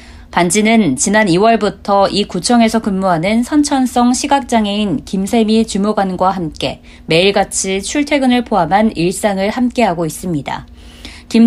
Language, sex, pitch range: Korean, female, 175-235 Hz